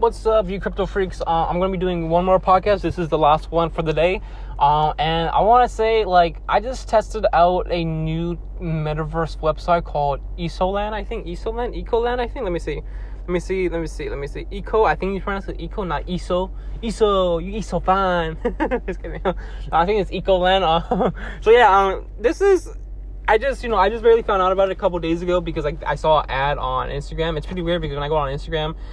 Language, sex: English, male